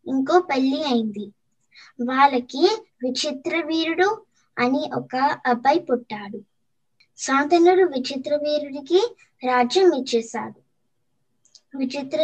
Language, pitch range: Telugu, 240-325 Hz